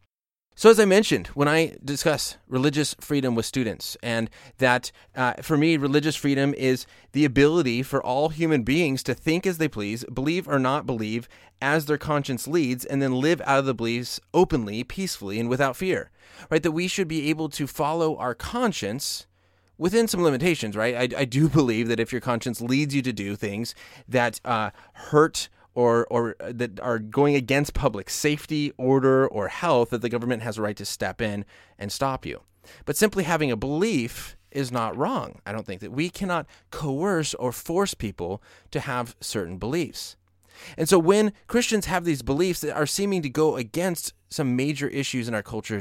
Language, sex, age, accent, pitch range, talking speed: English, male, 30-49, American, 110-155 Hz, 190 wpm